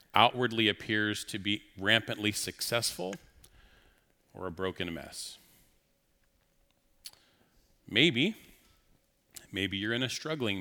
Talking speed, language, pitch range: 90 wpm, English, 90-115 Hz